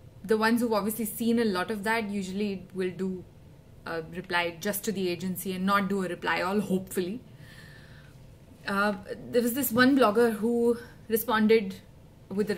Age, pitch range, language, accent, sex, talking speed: 20-39, 180-235 Hz, English, Indian, female, 170 wpm